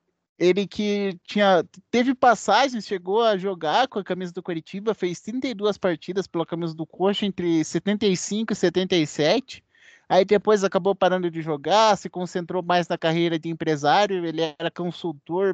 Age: 20-39